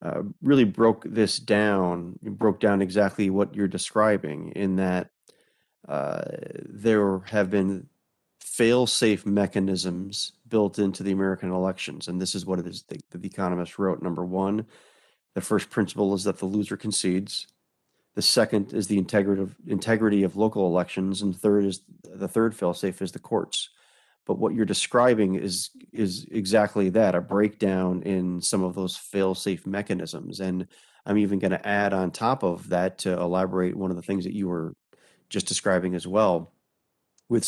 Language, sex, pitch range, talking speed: English, male, 95-105 Hz, 160 wpm